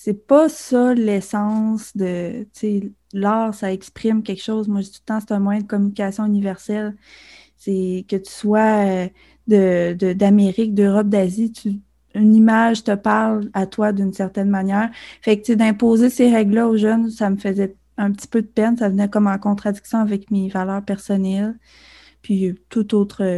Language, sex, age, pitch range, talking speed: French, female, 20-39, 195-230 Hz, 180 wpm